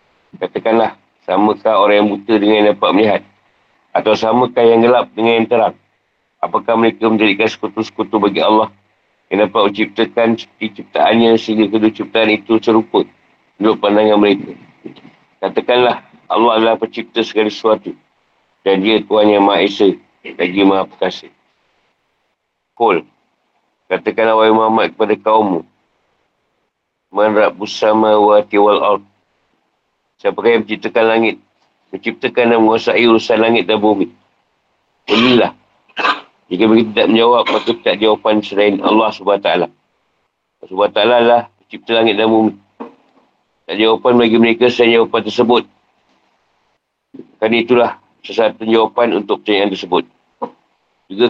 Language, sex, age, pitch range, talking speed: Malay, male, 50-69, 105-115 Hz, 120 wpm